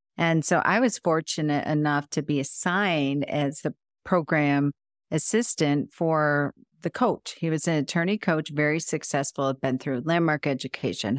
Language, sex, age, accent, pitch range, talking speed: English, female, 50-69, American, 145-175 Hz, 150 wpm